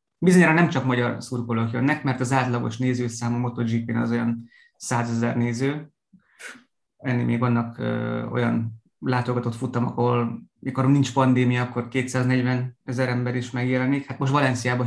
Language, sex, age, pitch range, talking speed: Hungarian, male, 20-39, 125-150 Hz, 140 wpm